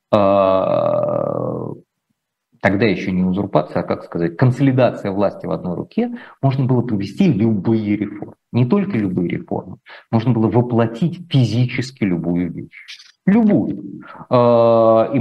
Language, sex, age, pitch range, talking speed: Russian, male, 40-59, 105-165 Hz, 115 wpm